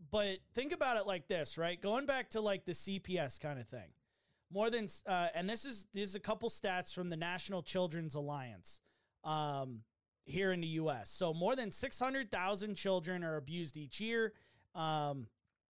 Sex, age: male, 30-49